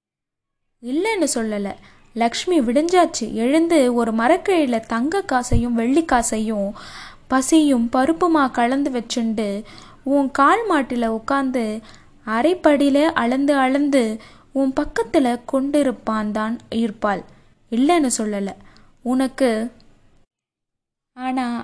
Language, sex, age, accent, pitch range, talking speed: Tamil, female, 20-39, native, 235-295 Hz, 80 wpm